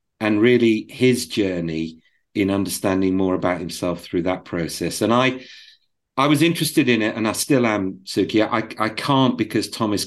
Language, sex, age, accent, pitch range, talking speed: English, male, 40-59, British, 85-105 Hz, 180 wpm